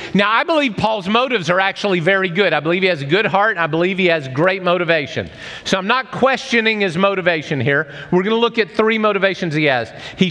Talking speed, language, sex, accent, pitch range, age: 220 wpm, English, male, American, 155-230 Hz, 40-59